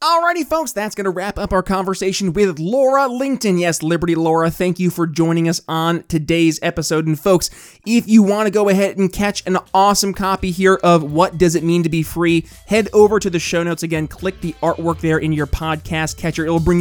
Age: 20-39